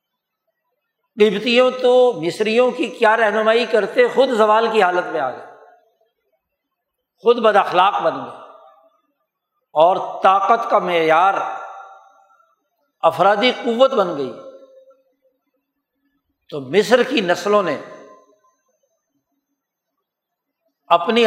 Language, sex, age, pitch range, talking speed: Urdu, male, 60-79, 205-285 Hz, 95 wpm